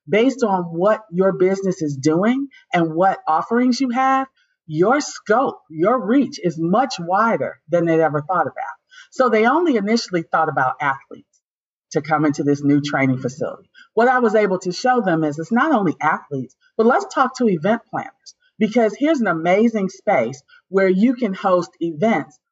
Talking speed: 175 wpm